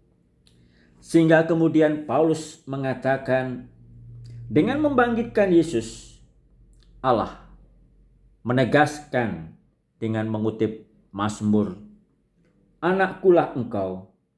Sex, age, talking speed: male, 50-69, 60 wpm